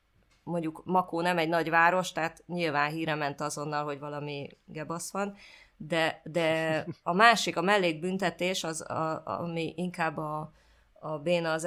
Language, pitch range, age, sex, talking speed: Hungarian, 160-185 Hz, 20-39, female, 140 wpm